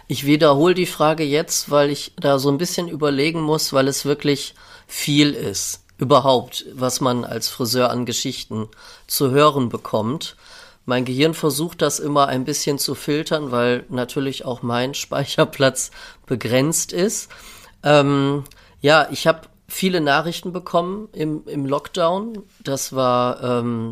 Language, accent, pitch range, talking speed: German, German, 125-150 Hz, 145 wpm